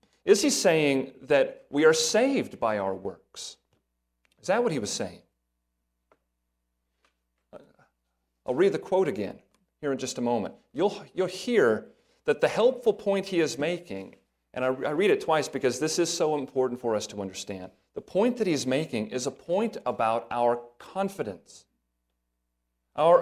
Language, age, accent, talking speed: English, 40-59, American, 165 wpm